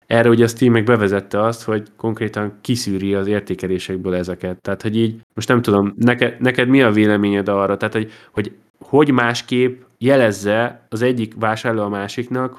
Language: Hungarian